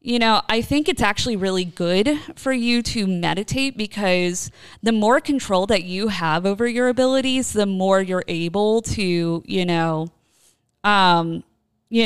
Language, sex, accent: English, female, American